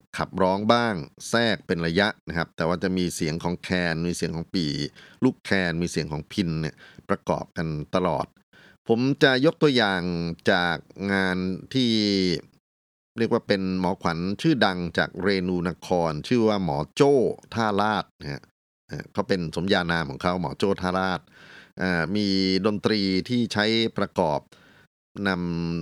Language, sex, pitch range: Thai, male, 80-100 Hz